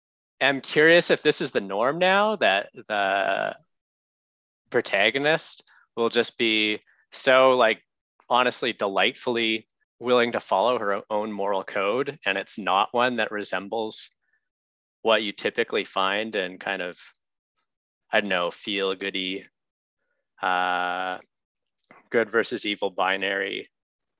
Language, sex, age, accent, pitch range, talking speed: English, male, 30-49, American, 100-120 Hz, 120 wpm